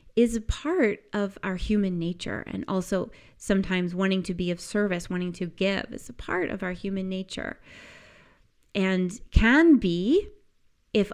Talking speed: 155 wpm